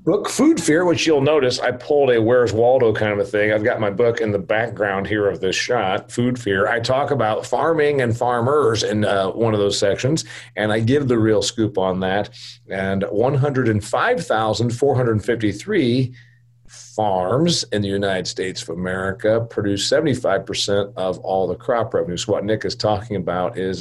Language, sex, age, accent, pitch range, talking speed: English, male, 40-59, American, 100-125 Hz, 175 wpm